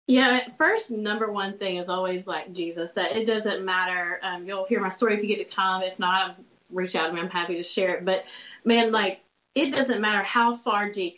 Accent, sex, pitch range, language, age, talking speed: American, female, 190-235 Hz, English, 30-49, 230 wpm